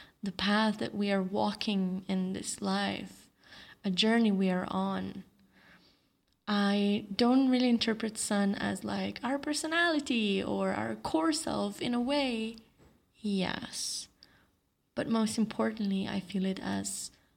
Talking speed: 130 wpm